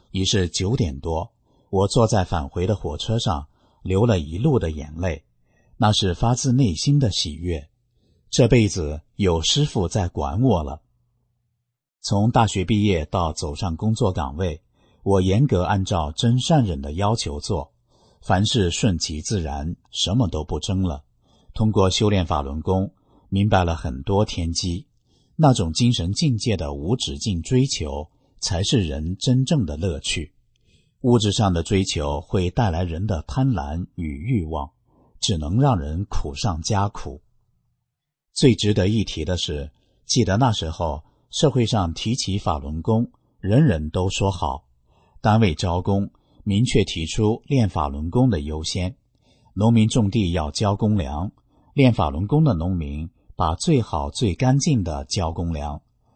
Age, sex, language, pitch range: 50-69, male, English, 85-115 Hz